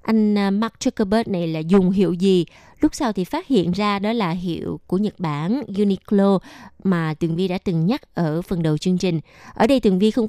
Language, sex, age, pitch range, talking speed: Vietnamese, female, 20-39, 180-240 Hz, 215 wpm